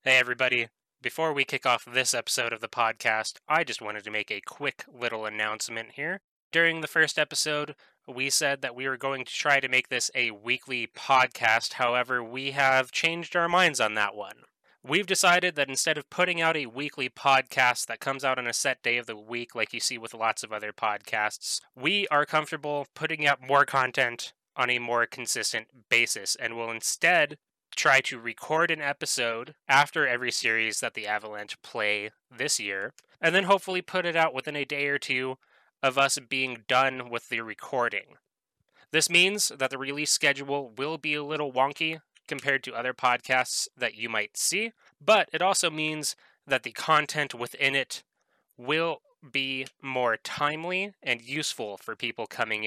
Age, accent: 20-39, American